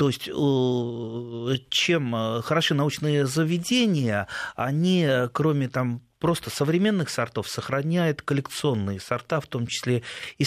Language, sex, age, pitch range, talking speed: Russian, male, 30-49, 115-150 Hz, 110 wpm